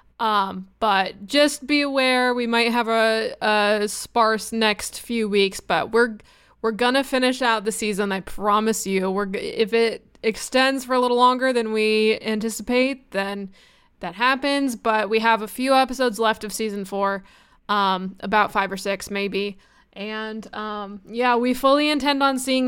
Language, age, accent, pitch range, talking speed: English, 20-39, American, 200-250 Hz, 165 wpm